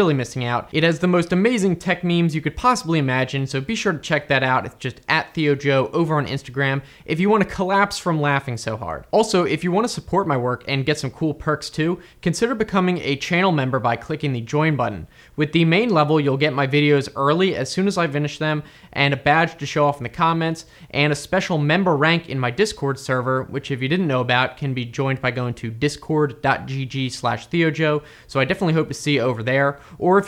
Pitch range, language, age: 135-175 Hz, English, 20-39